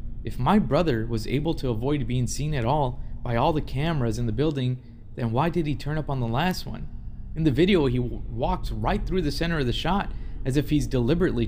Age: 20-39